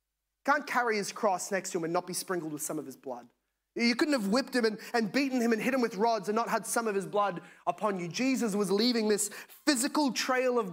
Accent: Australian